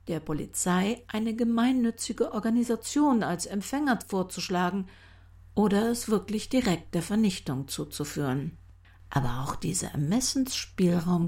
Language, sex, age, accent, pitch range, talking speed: German, female, 50-69, German, 165-240 Hz, 100 wpm